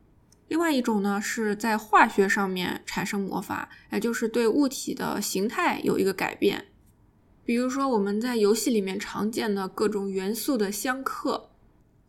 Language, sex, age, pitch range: Chinese, female, 10-29, 205-255 Hz